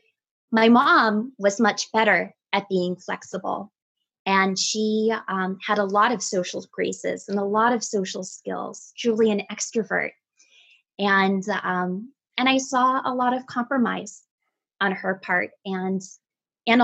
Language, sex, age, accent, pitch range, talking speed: English, female, 20-39, American, 200-260 Hz, 145 wpm